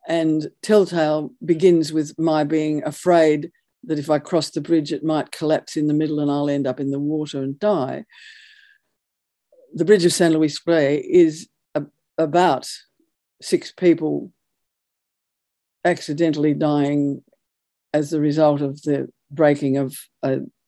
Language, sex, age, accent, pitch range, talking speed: English, female, 50-69, Australian, 150-195 Hz, 140 wpm